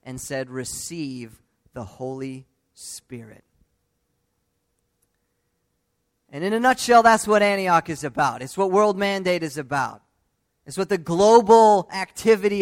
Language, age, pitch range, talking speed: English, 20-39, 155-215 Hz, 125 wpm